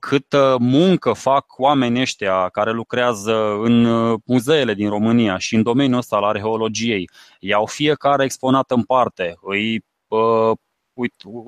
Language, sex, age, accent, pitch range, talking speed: Romanian, male, 20-39, native, 115-140 Hz, 125 wpm